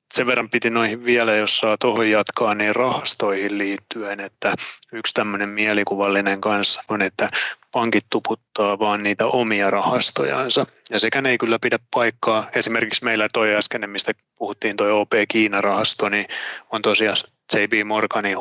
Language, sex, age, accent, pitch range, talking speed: Finnish, male, 20-39, native, 100-110 Hz, 150 wpm